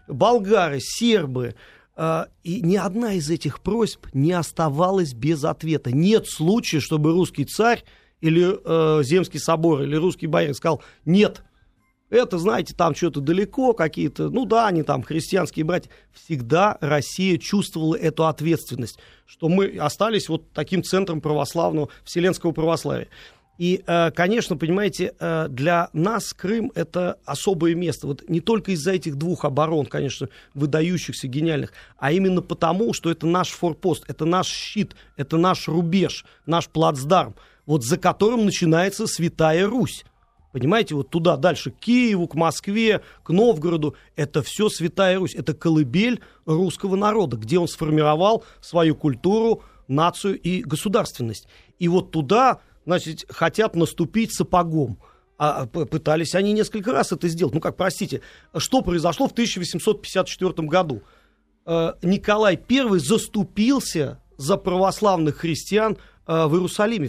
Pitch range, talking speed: 155-195 Hz, 130 wpm